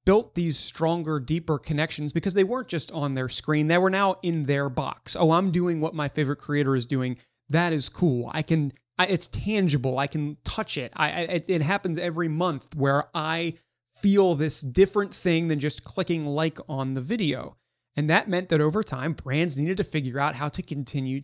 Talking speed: 195 wpm